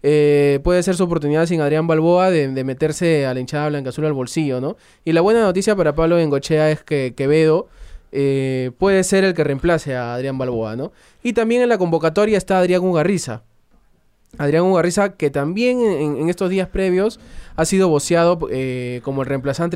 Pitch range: 140-165 Hz